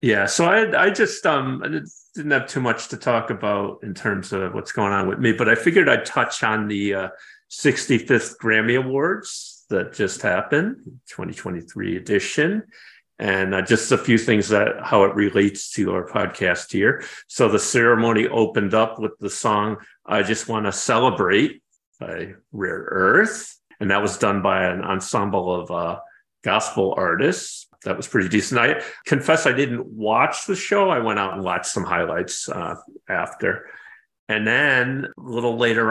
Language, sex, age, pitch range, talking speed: English, male, 50-69, 100-120 Hz, 170 wpm